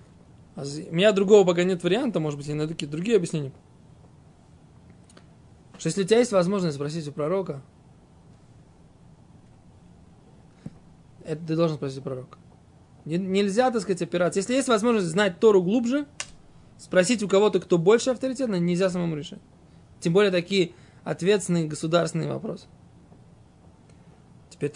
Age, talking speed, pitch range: 20-39, 130 wpm, 160-205 Hz